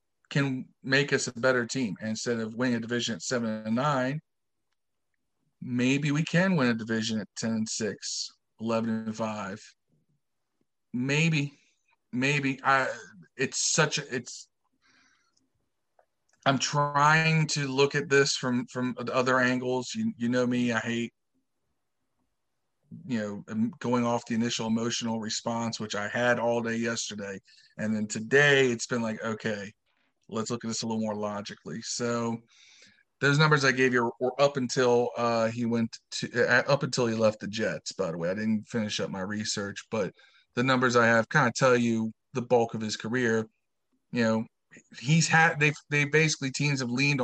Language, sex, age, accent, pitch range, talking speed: English, male, 40-59, American, 115-135 Hz, 170 wpm